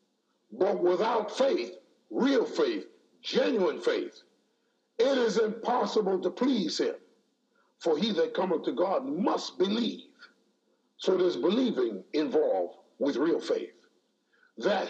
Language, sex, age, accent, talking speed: English, male, 60-79, American, 115 wpm